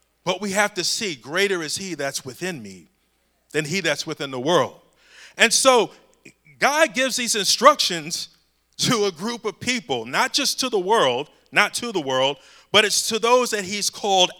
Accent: American